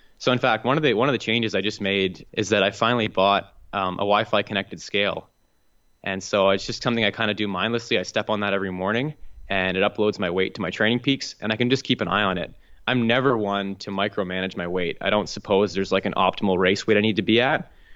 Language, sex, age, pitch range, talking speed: English, male, 20-39, 95-110 Hz, 260 wpm